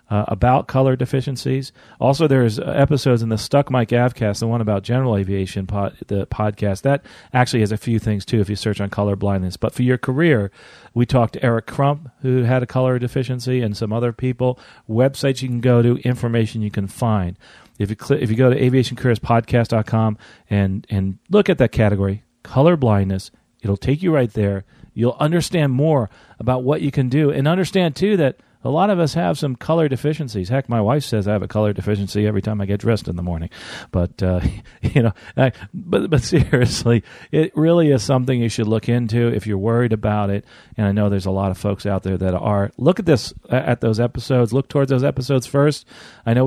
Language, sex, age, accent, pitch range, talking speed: English, male, 40-59, American, 105-130 Hz, 210 wpm